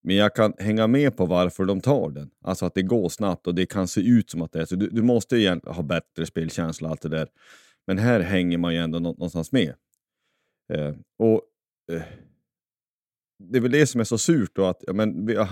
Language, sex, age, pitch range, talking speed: Swedish, male, 30-49, 80-105 Hz, 240 wpm